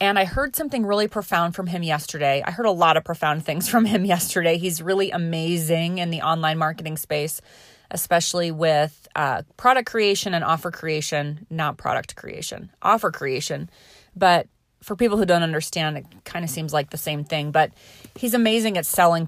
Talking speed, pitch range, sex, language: 185 wpm, 165-210 Hz, female, English